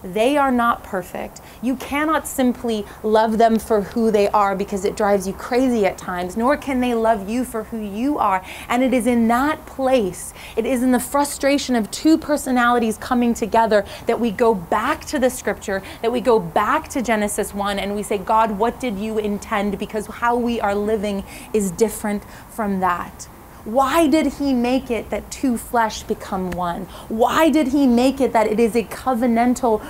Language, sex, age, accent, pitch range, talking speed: English, female, 30-49, American, 210-255 Hz, 195 wpm